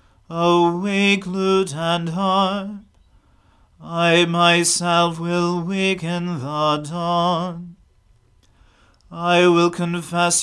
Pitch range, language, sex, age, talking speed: 165-175 Hz, English, male, 30-49, 75 wpm